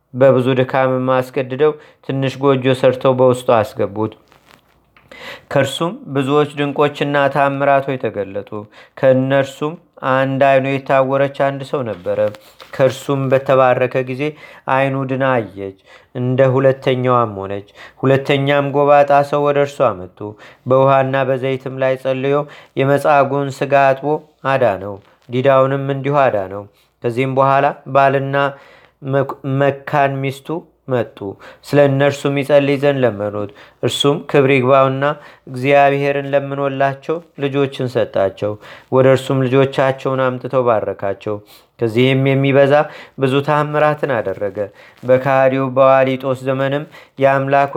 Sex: male